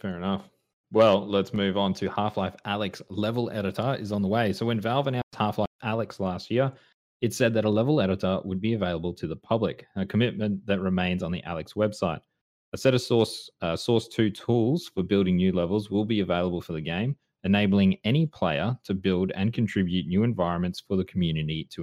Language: English